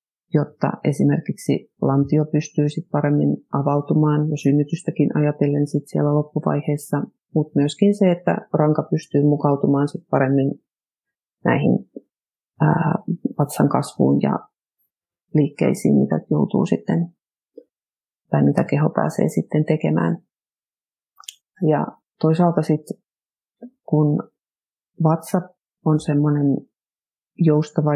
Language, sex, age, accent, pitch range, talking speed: Finnish, female, 40-59, native, 140-155 Hz, 95 wpm